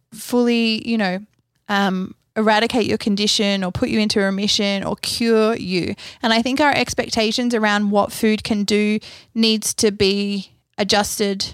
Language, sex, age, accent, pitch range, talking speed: English, female, 20-39, Australian, 195-225 Hz, 150 wpm